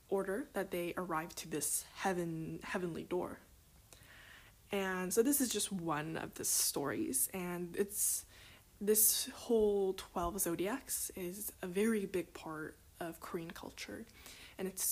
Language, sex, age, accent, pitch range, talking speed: English, female, 10-29, American, 175-215 Hz, 135 wpm